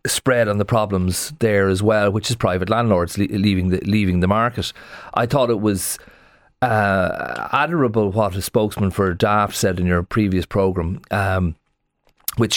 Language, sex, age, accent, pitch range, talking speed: English, male, 40-59, Irish, 100-120 Hz, 165 wpm